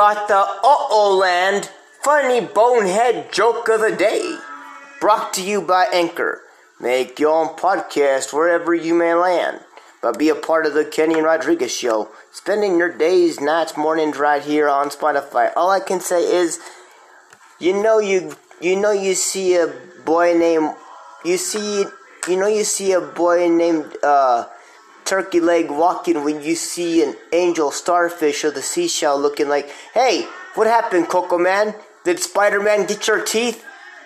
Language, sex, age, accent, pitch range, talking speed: English, male, 30-49, American, 160-210 Hz, 160 wpm